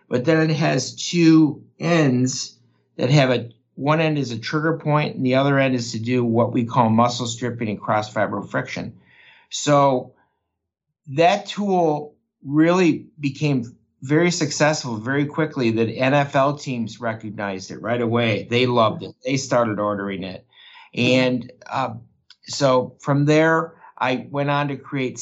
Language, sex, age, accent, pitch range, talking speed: English, male, 50-69, American, 120-145 Hz, 150 wpm